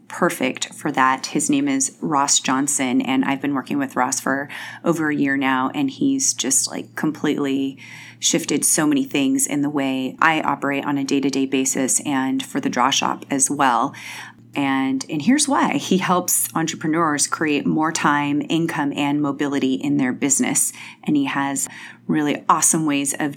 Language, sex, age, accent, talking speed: English, female, 30-49, American, 170 wpm